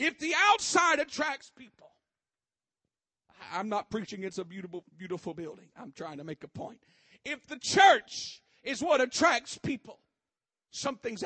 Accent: American